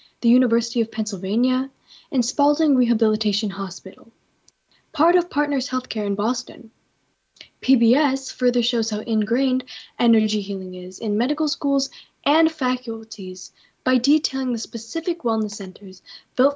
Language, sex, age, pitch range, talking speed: English, female, 10-29, 205-260 Hz, 125 wpm